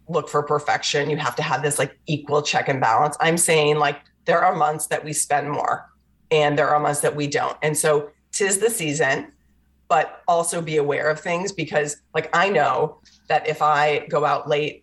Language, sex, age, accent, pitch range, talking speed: English, female, 40-59, American, 150-170 Hz, 205 wpm